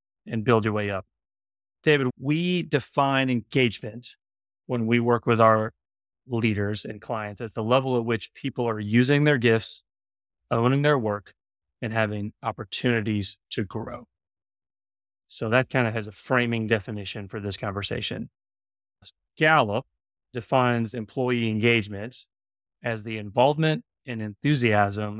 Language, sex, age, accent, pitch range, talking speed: English, male, 30-49, American, 105-130 Hz, 130 wpm